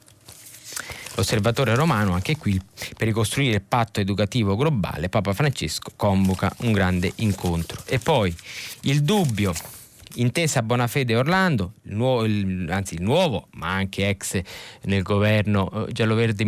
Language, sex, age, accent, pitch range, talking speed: Italian, male, 20-39, native, 105-140 Hz, 125 wpm